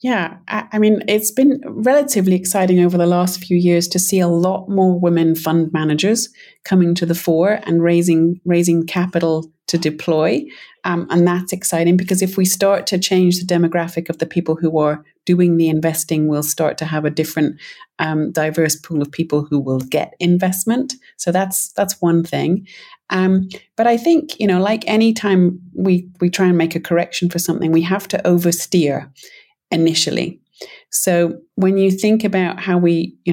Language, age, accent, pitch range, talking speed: English, 30-49, British, 160-190 Hz, 180 wpm